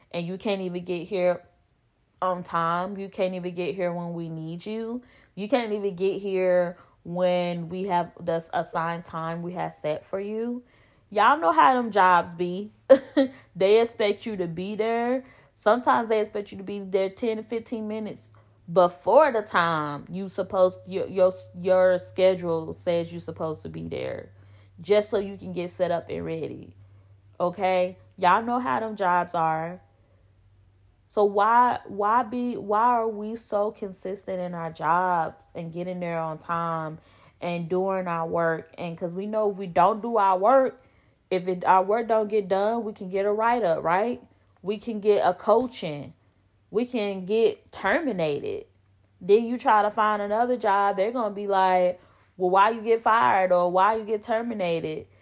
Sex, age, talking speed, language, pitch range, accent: female, 20-39, 175 wpm, English, 170-215 Hz, American